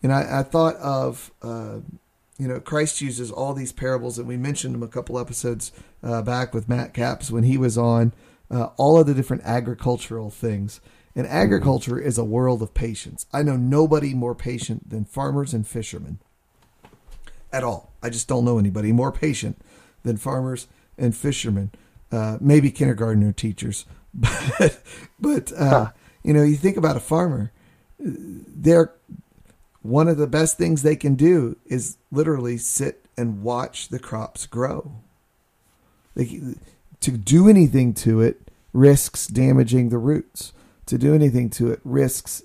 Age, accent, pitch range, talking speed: 40-59, American, 115-140 Hz, 155 wpm